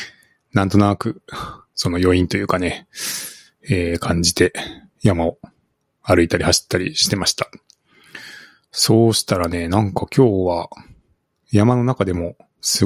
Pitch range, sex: 90-115 Hz, male